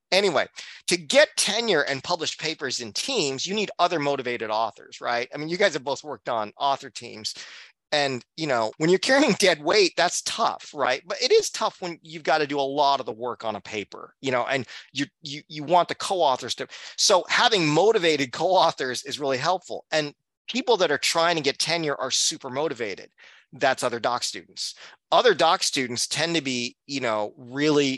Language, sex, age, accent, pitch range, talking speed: English, male, 30-49, American, 120-160 Hz, 200 wpm